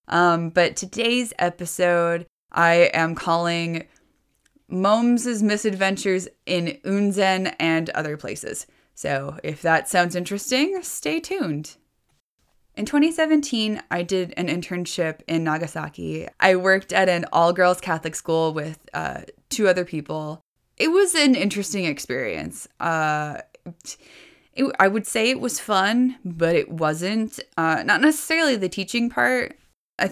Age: 20-39